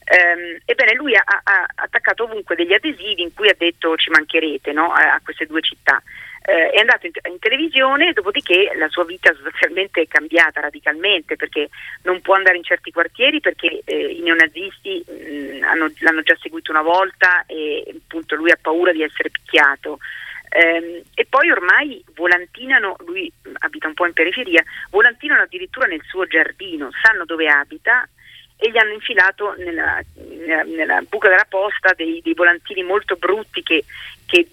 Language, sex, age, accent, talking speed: Italian, female, 40-59, native, 170 wpm